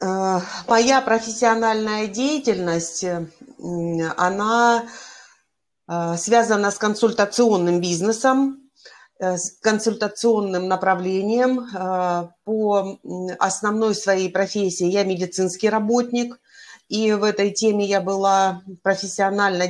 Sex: female